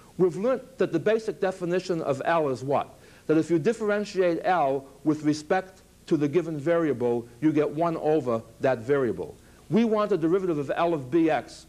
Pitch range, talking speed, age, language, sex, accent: 140-175 Hz, 180 wpm, 60-79, English, male, American